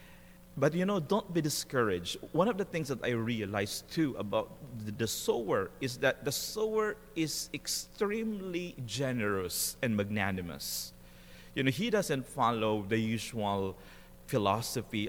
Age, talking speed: 30-49, 140 wpm